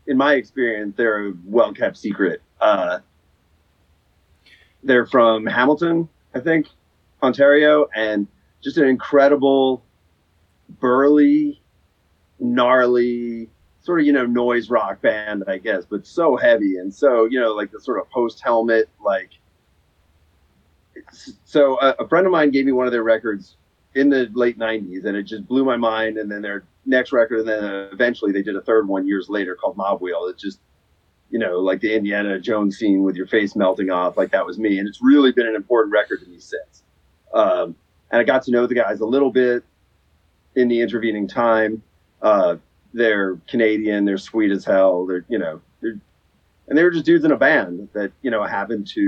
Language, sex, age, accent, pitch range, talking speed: English, male, 30-49, American, 95-125 Hz, 180 wpm